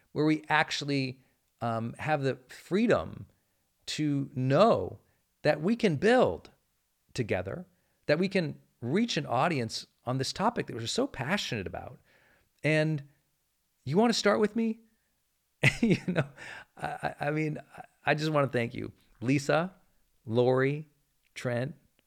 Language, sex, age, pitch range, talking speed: English, male, 40-59, 105-145 Hz, 135 wpm